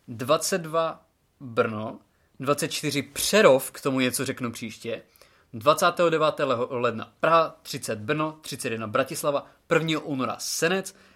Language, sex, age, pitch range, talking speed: Czech, male, 20-39, 125-145 Hz, 110 wpm